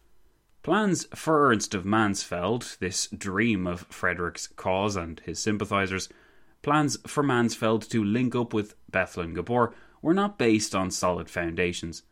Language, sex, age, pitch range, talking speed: English, male, 20-39, 90-115 Hz, 140 wpm